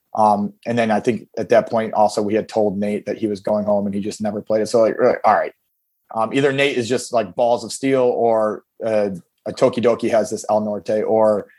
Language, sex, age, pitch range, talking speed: English, male, 30-49, 105-120 Hz, 240 wpm